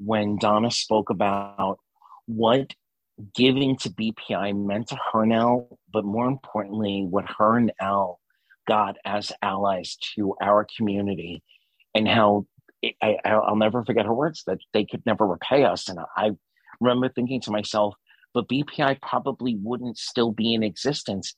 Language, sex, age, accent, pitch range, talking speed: English, male, 40-59, American, 105-125 Hz, 150 wpm